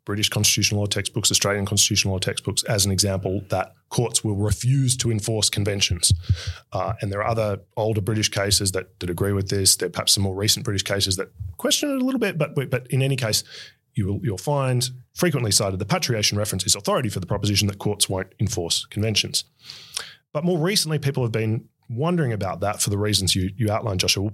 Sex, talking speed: male, 205 wpm